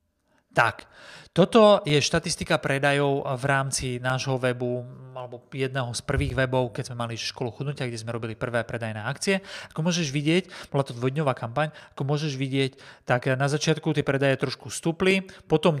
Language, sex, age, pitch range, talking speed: Slovak, male, 30-49, 125-175 Hz, 165 wpm